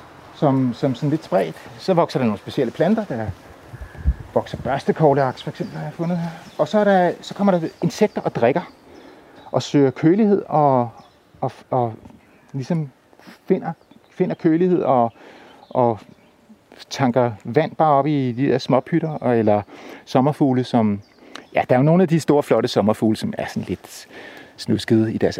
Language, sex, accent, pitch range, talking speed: Danish, male, native, 115-150 Hz, 170 wpm